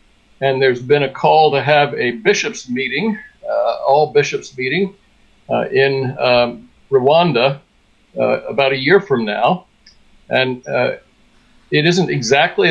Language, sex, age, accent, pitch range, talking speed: English, male, 60-79, American, 130-180 Hz, 135 wpm